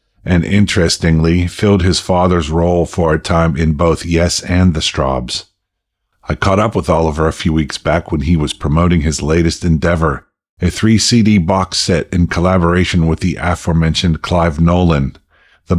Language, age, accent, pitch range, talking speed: English, 50-69, American, 80-95 Hz, 165 wpm